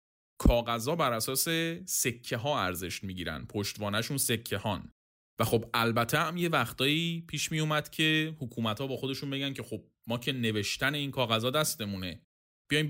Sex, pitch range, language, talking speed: male, 110-150 Hz, Persian, 160 wpm